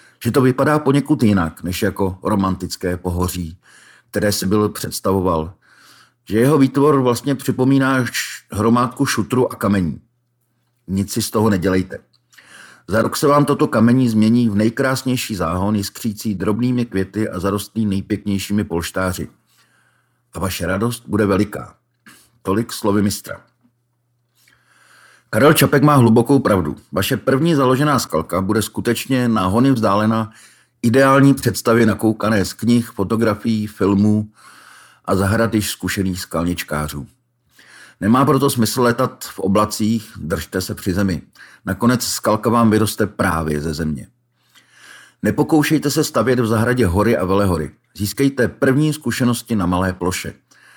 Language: Czech